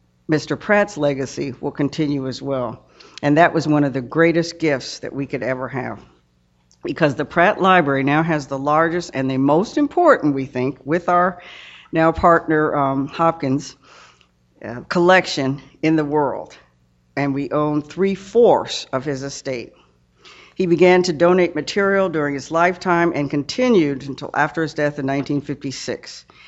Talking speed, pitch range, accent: 155 wpm, 130-165 Hz, American